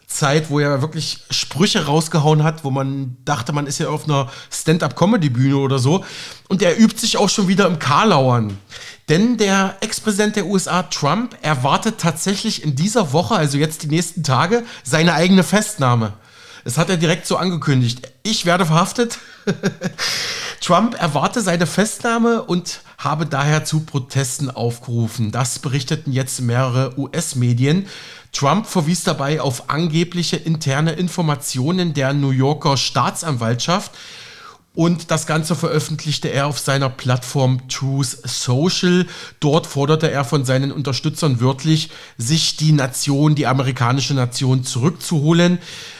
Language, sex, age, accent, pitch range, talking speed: German, male, 40-59, German, 140-180 Hz, 135 wpm